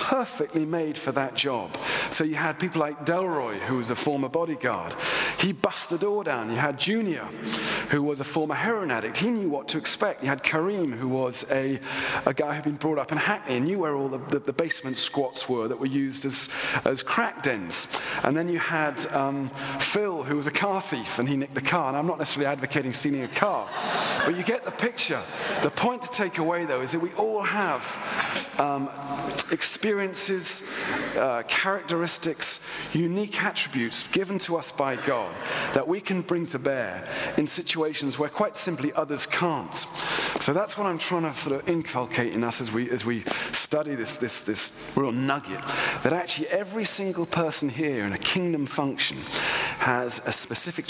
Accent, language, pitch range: British, English, 135-175 Hz